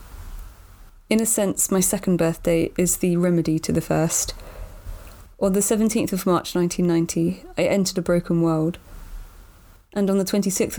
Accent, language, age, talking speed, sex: British, English, 20-39, 150 wpm, female